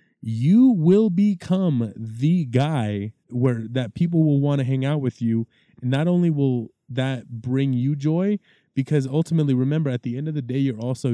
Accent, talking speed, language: American, 185 wpm, English